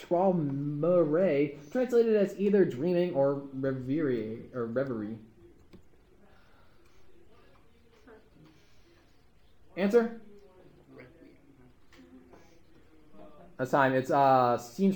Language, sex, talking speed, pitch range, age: English, male, 60 wpm, 140-215 Hz, 20-39